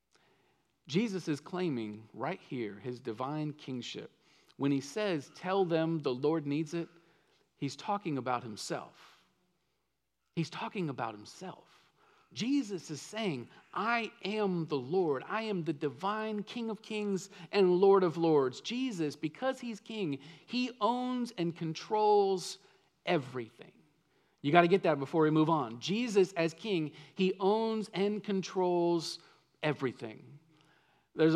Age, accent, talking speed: 40-59, American, 135 wpm